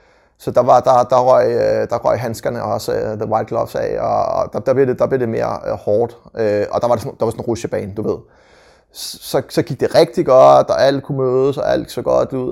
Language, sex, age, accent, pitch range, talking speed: Danish, male, 30-49, native, 110-145 Hz, 255 wpm